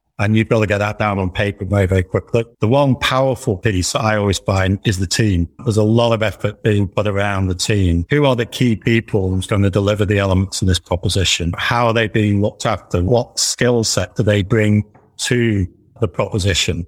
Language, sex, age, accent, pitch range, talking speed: English, male, 50-69, British, 100-120 Hz, 220 wpm